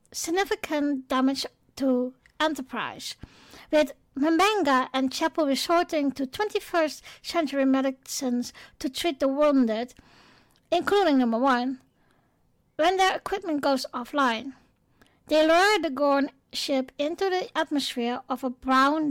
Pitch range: 260-305 Hz